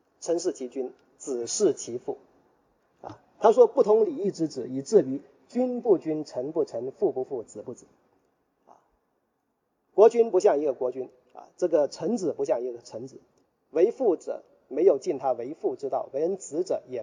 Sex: male